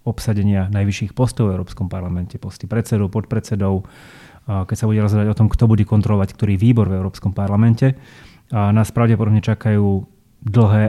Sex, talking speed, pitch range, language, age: male, 155 wpm, 100-115 Hz, Slovak, 30-49